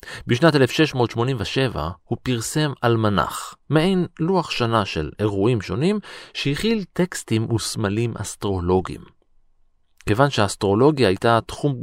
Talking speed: 95 wpm